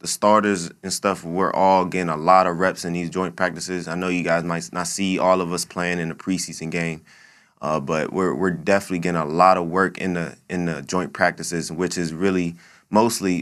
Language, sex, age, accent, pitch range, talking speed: English, male, 20-39, American, 85-90 Hz, 220 wpm